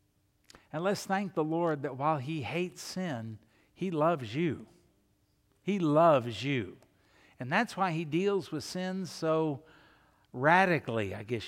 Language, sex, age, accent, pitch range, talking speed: English, male, 60-79, American, 125-170 Hz, 140 wpm